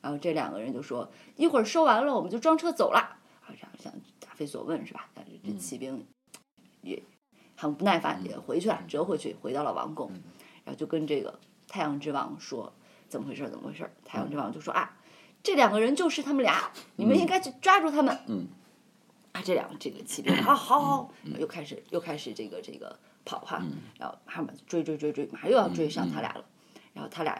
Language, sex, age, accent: Chinese, female, 20-39, native